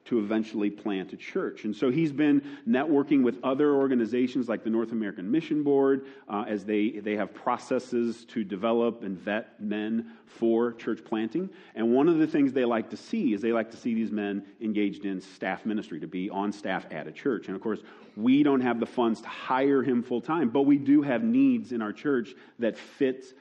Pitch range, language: 105-135 Hz, English